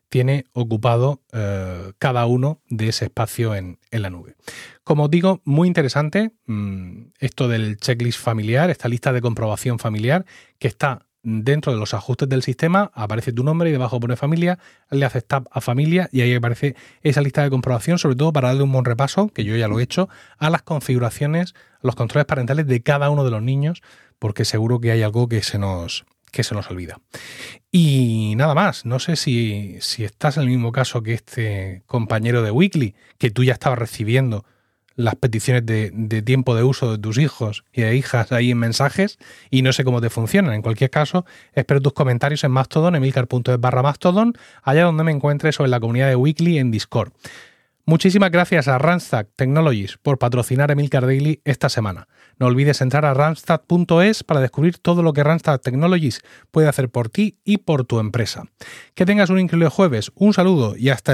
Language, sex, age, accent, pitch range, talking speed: Spanish, male, 30-49, Spanish, 115-155 Hz, 195 wpm